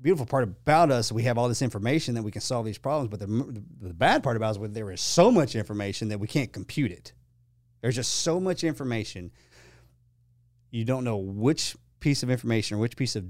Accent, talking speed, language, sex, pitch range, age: American, 215 wpm, English, male, 105-120 Hz, 30-49